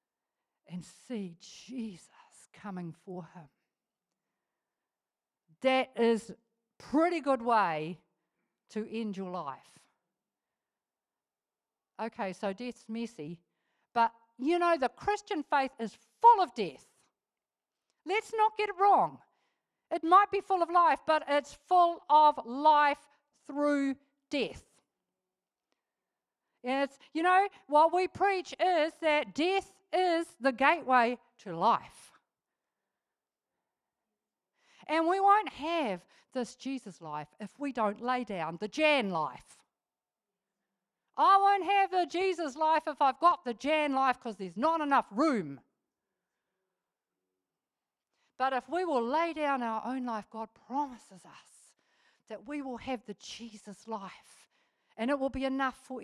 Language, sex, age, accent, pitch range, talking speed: English, female, 50-69, Australian, 220-315 Hz, 125 wpm